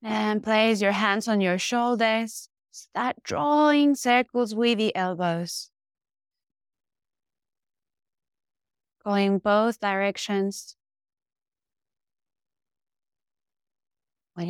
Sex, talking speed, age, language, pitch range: female, 70 wpm, 20-39, English, 185-215 Hz